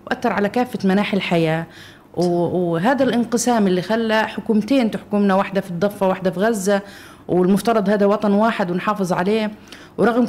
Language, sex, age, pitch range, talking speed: Arabic, female, 30-49, 195-230 Hz, 140 wpm